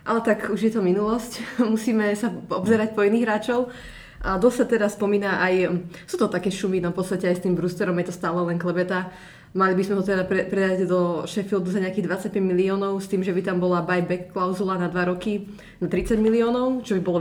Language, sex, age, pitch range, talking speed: Slovak, female, 20-39, 170-200 Hz, 225 wpm